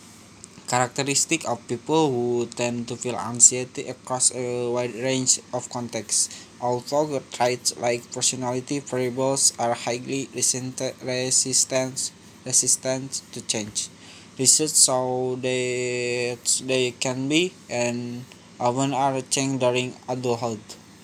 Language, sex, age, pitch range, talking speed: Indonesian, male, 20-39, 120-135 Hz, 110 wpm